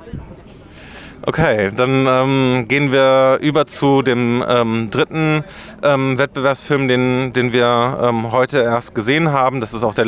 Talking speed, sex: 145 wpm, male